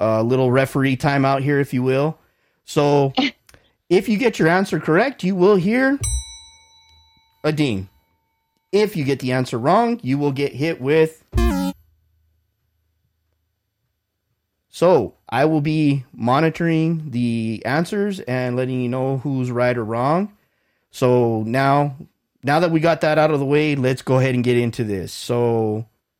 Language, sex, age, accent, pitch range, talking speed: English, male, 30-49, American, 120-155 Hz, 150 wpm